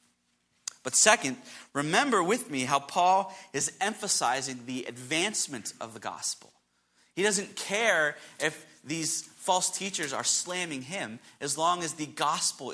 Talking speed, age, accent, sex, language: 135 wpm, 30-49, American, male, English